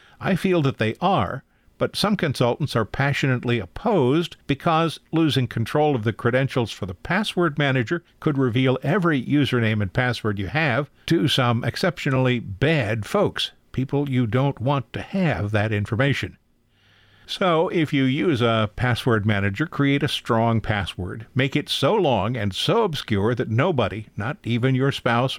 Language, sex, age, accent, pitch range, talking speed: English, male, 50-69, American, 110-145 Hz, 155 wpm